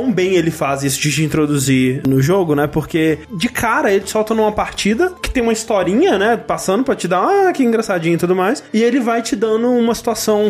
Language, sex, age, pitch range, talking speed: Portuguese, male, 20-39, 150-210 Hz, 225 wpm